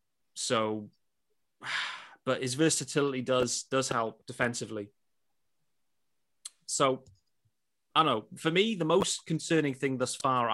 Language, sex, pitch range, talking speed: English, male, 115-150 Hz, 115 wpm